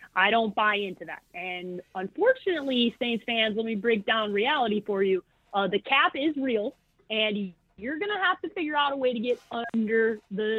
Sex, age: female, 30-49